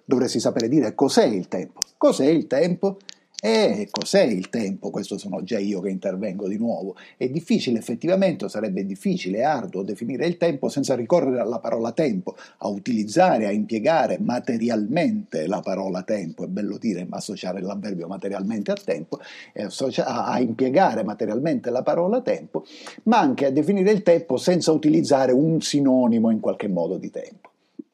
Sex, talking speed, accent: male, 165 wpm, native